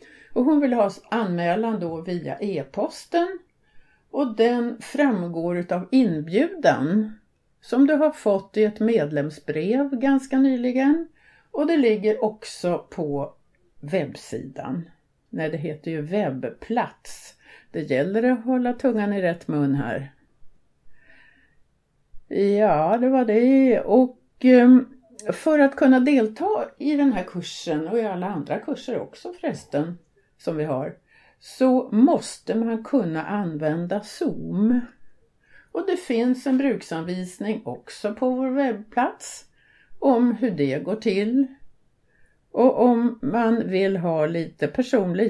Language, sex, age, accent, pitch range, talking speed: Swedish, female, 50-69, native, 175-260 Hz, 125 wpm